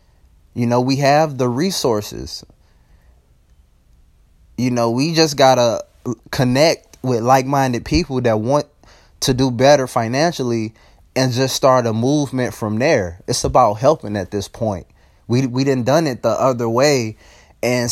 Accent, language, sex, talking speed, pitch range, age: American, English, male, 150 wpm, 115-135 Hz, 20-39